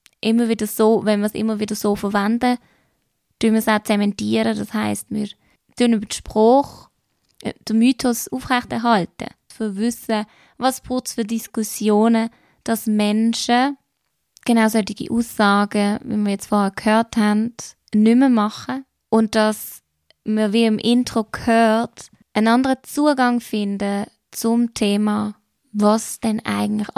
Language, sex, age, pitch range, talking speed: German, female, 20-39, 205-230 Hz, 140 wpm